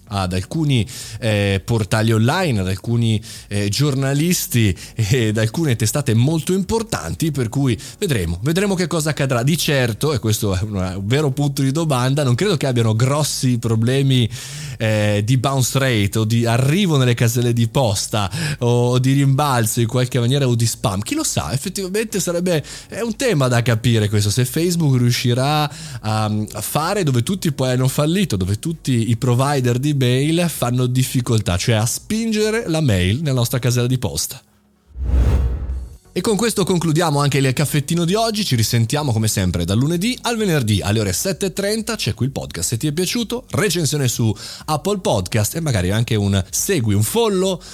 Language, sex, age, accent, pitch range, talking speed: Italian, male, 20-39, native, 110-155 Hz, 165 wpm